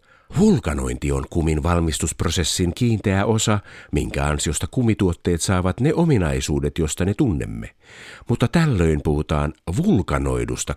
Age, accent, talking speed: 50-69, native, 105 wpm